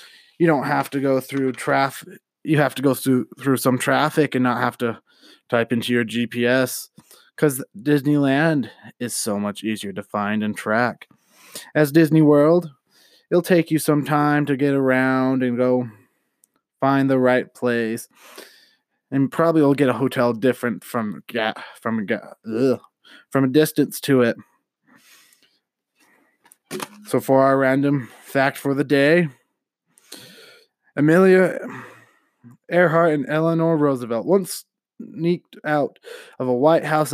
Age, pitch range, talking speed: 20-39, 130-155 Hz, 140 wpm